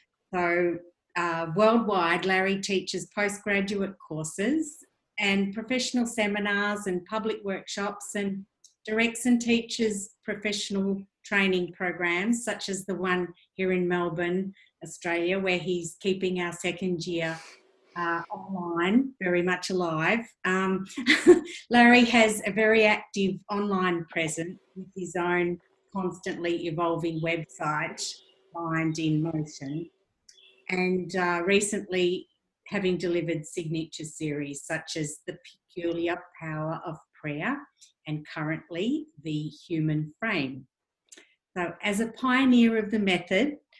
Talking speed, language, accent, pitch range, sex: 110 wpm, English, Australian, 165-205 Hz, female